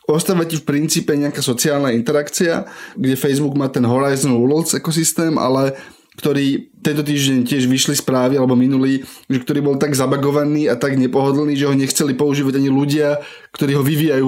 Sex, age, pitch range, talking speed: male, 20-39, 135-155 Hz, 160 wpm